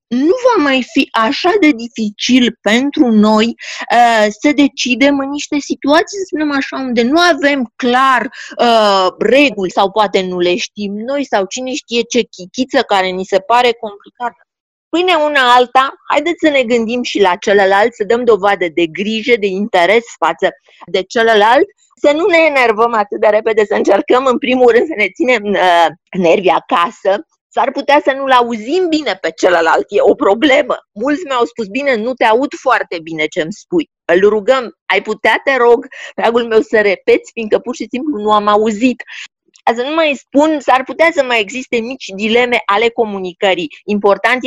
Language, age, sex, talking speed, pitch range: Romanian, 30-49, female, 175 wpm, 205-275 Hz